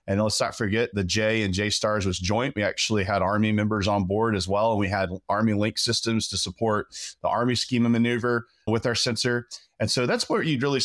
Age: 20-39